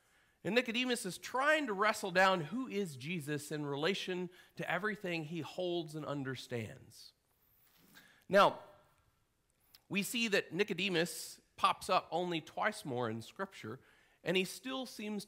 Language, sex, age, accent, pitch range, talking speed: English, male, 40-59, American, 140-185 Hz, 135 wpm